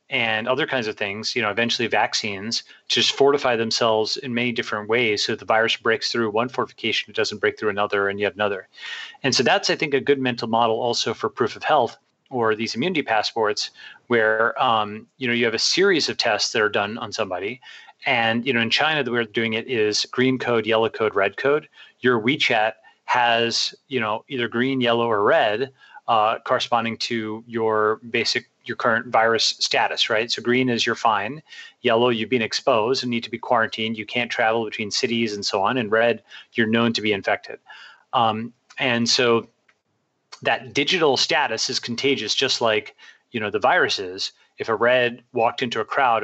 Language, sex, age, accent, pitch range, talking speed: English, male, 30-49, American, 115-130 Hz, 200 wpm